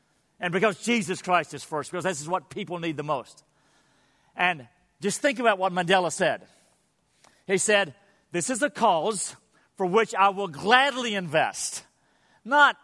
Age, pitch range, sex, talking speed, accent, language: 50-69, 175-225 Hz, male, 160 wpm, American, English